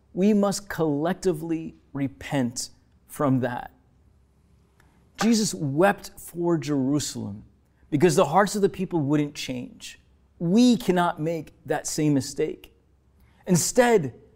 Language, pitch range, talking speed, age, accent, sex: English, 120-165 Hz, 105 wpm, 30-49, American, male